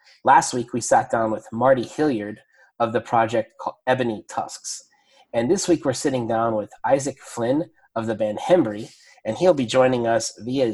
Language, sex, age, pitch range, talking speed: English, male, 30-49, 115-140 Hz, 185 wpm